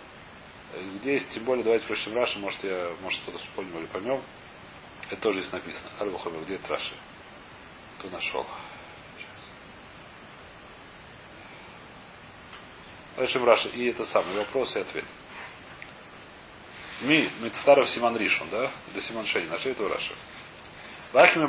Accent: native